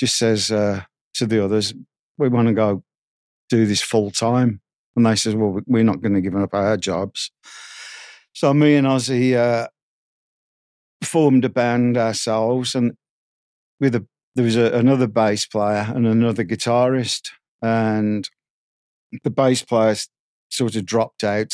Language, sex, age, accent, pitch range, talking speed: English, male, 50-69, British, 105-125 Hz, 150 wpm